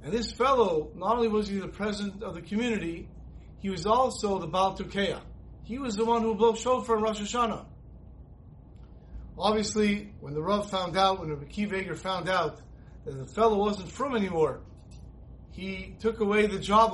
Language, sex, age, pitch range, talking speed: English, male, 40-59, 185-230 Hz, 175 wpm